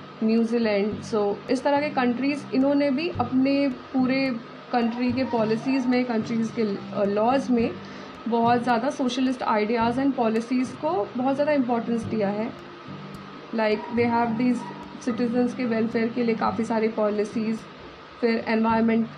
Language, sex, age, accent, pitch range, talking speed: Hindi, female, 20-39, native, 225-260 Hz, 145 wpm